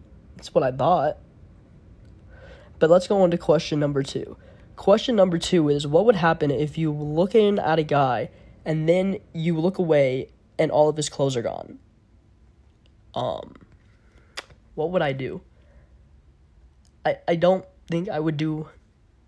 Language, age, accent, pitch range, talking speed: English, 10-29, American, 135-165 Hz, 155 wpm